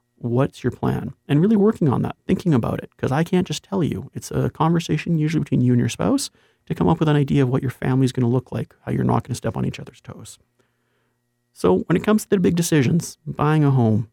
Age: 30-49